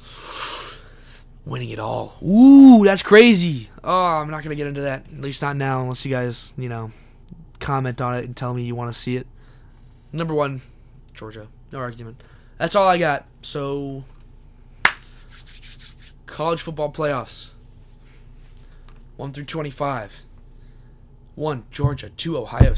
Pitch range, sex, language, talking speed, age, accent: 120-150 Hz, male, English, 140 wpm, 20-39, American